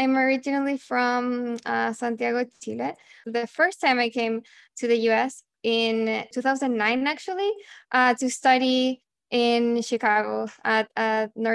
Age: 10-29